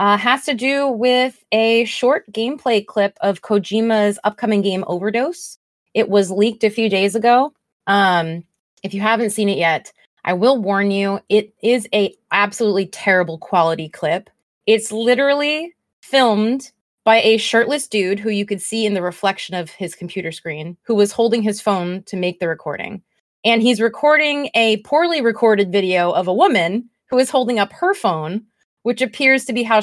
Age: 20-39